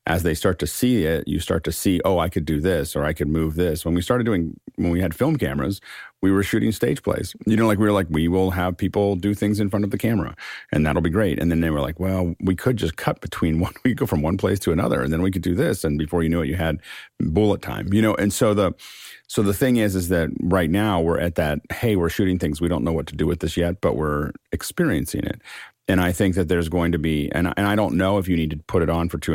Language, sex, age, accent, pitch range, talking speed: English, male, 40-59, American, 80-95 Hz, 295 wpm